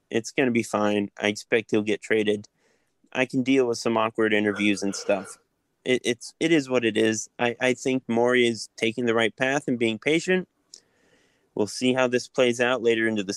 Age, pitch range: 20-39, 110-140 Hz